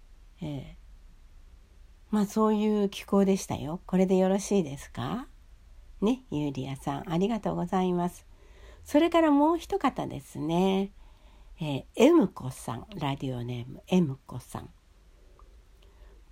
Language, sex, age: Japanese, female, 60-79